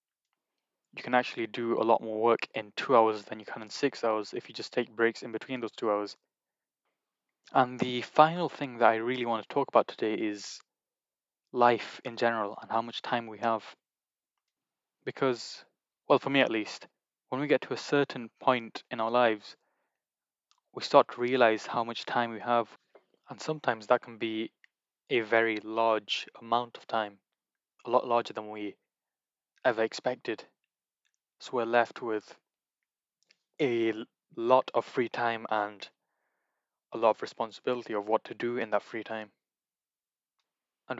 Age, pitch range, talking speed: 10-29, 110-120 Hz, 170 wpm